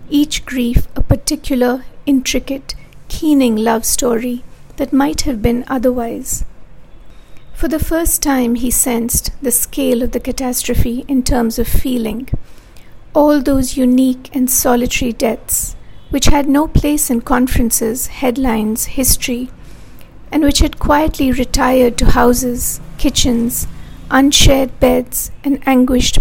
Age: 50-69